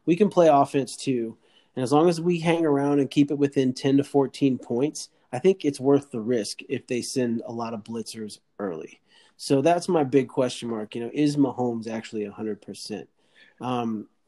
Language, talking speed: English, 200 wpm